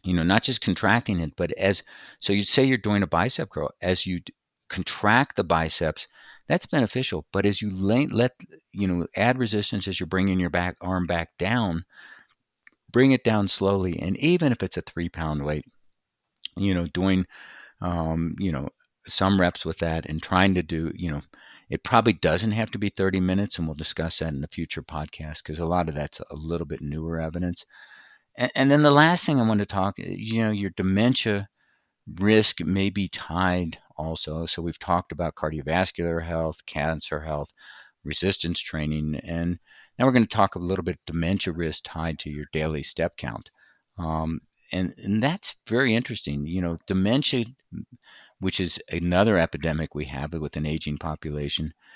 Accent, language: American, English